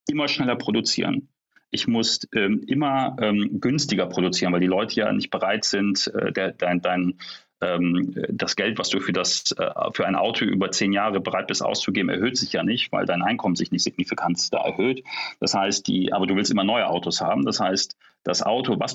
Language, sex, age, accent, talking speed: German, male, 40-59, German, 195 wpm